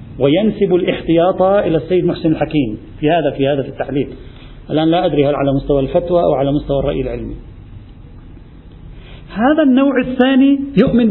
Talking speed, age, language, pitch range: 145 wpm, 40-59, Arabic, 155-200 Hz